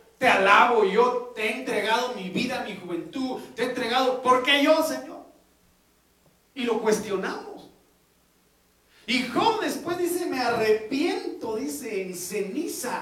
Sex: male